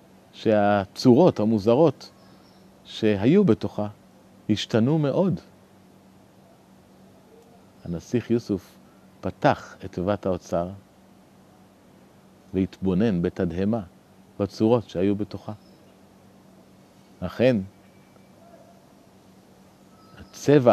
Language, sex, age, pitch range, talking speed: Hebrew, male, 40-59, 95-120 Hz, 55 wpm